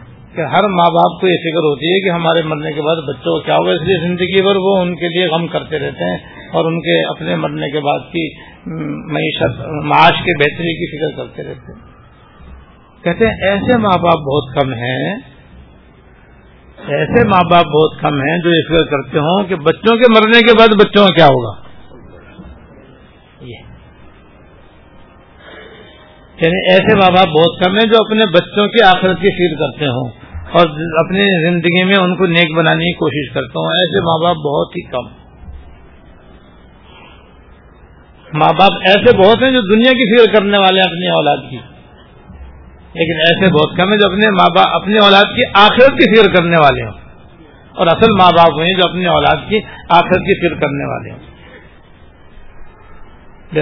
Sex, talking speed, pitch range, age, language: male, 175 wpm, 145-195 Hz, 50-69, Urdu